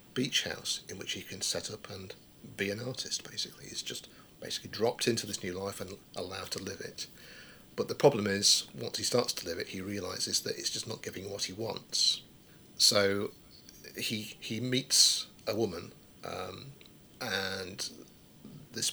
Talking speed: 175 wpm